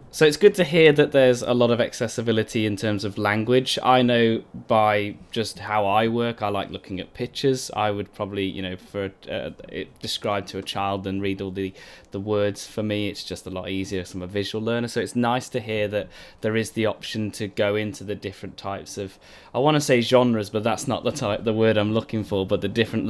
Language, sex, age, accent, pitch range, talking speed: English, male, 10-29, British, 100-125 Hz, 240 wpm